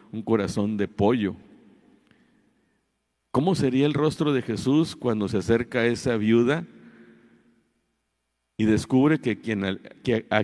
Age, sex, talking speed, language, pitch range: 50-69, male, 125 wpm, Spanish, 100-135 Hz